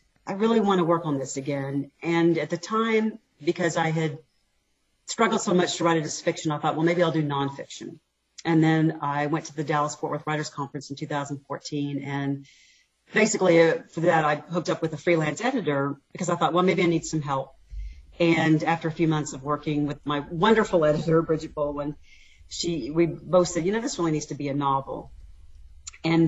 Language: English